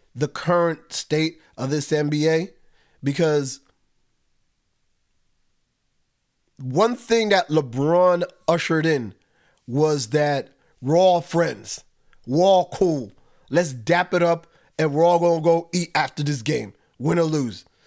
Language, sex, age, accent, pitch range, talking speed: English, male, 30-49, American, 155-200 Hz, 130 wpm